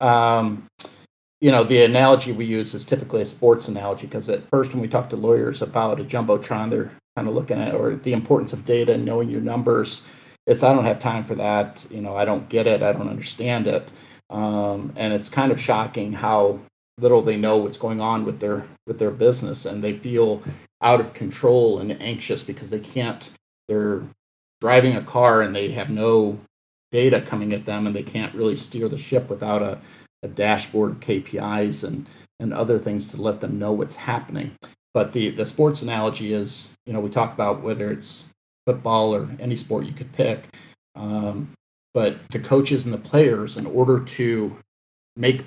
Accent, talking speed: American, 195 wpm